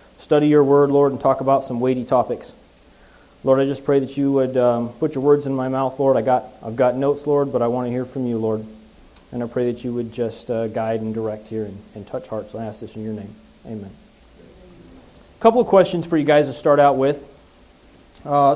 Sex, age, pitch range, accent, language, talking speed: male, 30-49, 115-145 Hz, American, English, 240 wpm